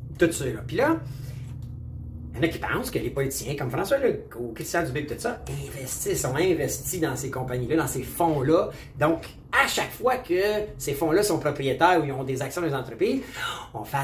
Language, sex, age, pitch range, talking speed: French, male, 30-49, 120-175 Hz, 210 wpm